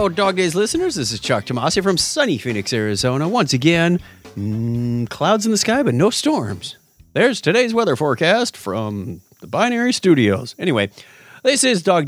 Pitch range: 110-185 Hz